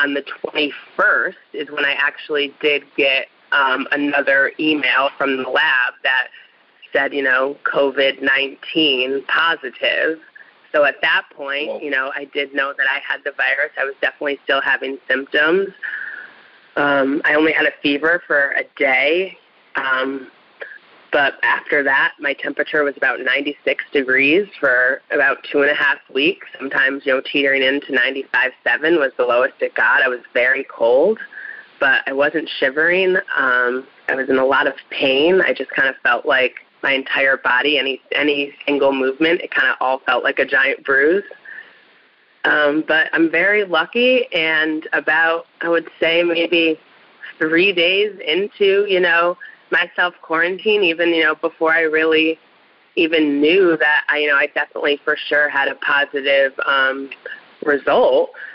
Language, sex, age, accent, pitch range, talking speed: English, female, 30-49, American, 140-165 Hz, 160 wpm